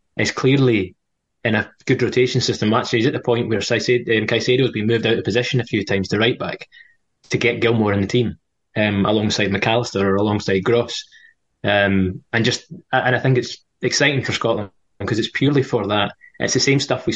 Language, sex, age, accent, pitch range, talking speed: English, male, 20-39, British, 105-125 Hz, 195 wpm